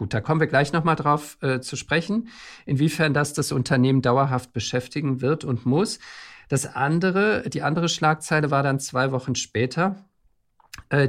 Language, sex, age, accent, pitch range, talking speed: German, male, 50-69, German, 120-150 Hz, 170 wpm